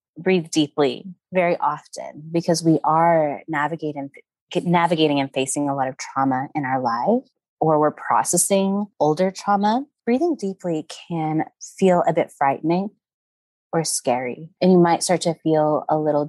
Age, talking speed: 20-39, 145 wpm